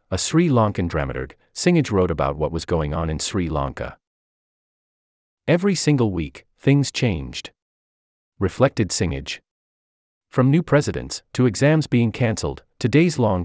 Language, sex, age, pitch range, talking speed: English, male, 40-59, 80-130 Hz, 135 wpm